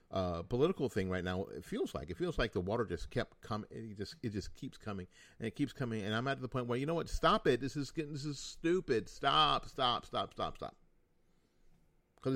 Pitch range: 95-120 Hz